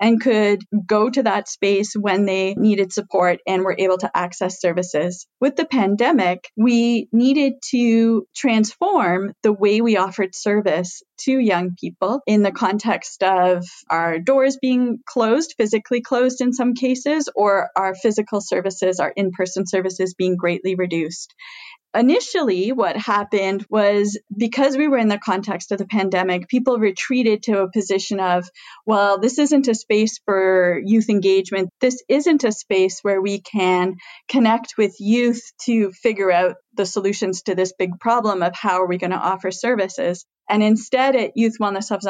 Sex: female